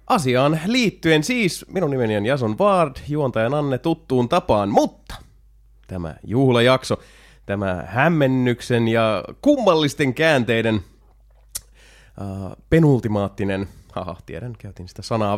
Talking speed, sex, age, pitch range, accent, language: 100 wpm, male, 30-49, 100-155 Hz, native, Finnish